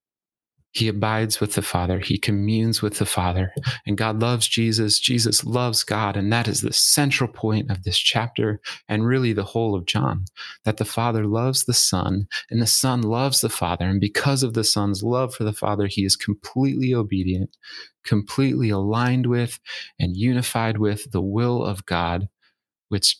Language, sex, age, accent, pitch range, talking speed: English, male, 30-49, American, 95-115 Hz, 175 wpm